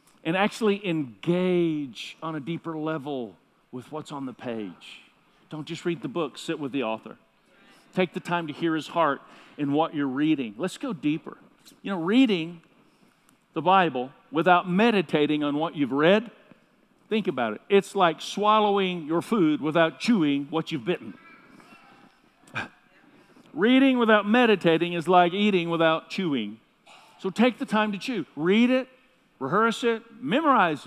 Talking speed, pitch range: 150 wpm, 160-220 Hz